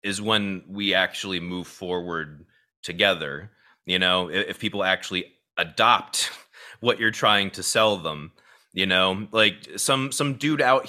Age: 30-49